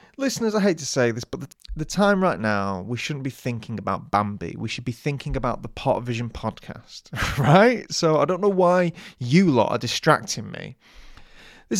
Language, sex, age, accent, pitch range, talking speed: English, male, 30-49, British, 115-160 Hz, 200 wpm